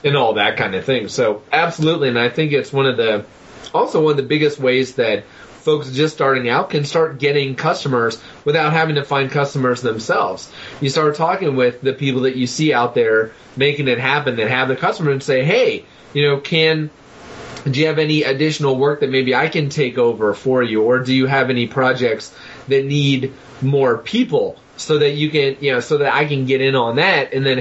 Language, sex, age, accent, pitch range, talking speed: English, male, 30-49, American, 125-150 Hz, 215 wpm